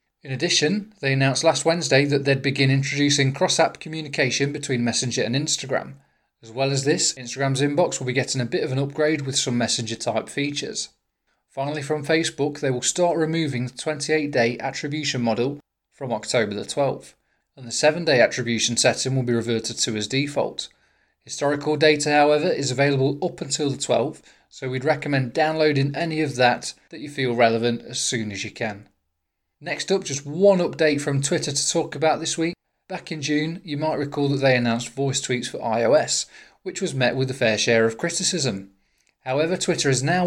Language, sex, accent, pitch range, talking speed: English, male, British, 125-155 Hz, 185 wpm